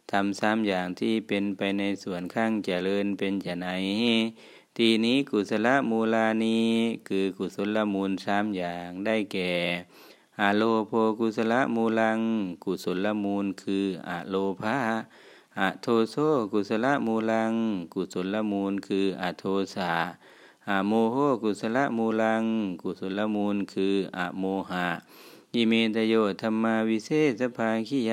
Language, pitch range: Thai, 95-115 Hz